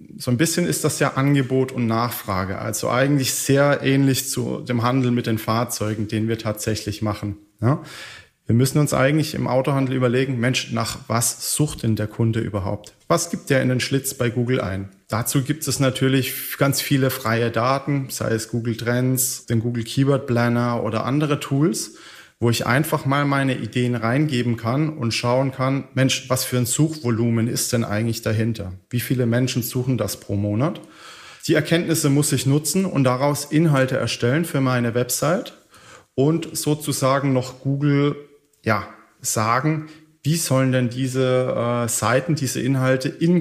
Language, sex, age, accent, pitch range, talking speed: German, male, 30-49, German, 115-145 Hz, 165 wpm